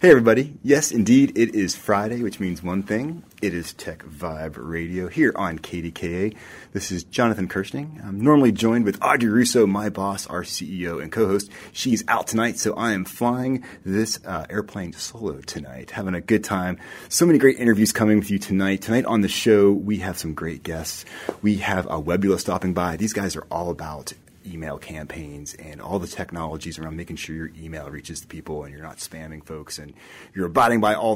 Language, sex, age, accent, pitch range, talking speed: English, male, 30-49, American, 85-110 Hz, 200 wpm